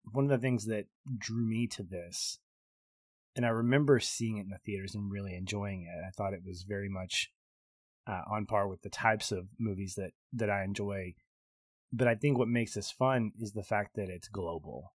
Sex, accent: male, American